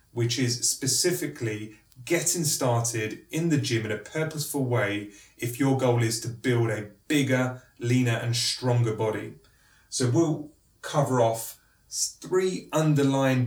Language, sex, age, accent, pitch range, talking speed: English, male, 30-49, British, 115-135 Hz, 135 wpm